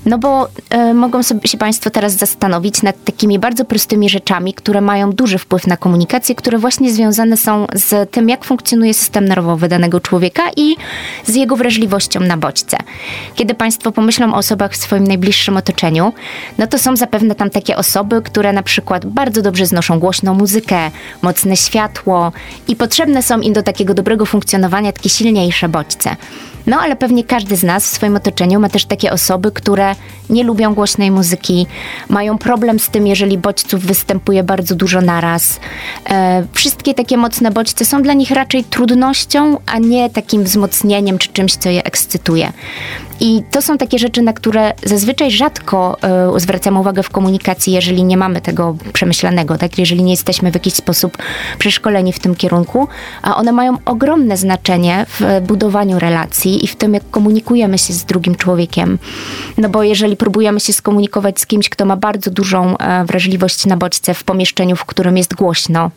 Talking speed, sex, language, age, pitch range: 170 wpm, female, Polish, 20-39, 185-225 Hz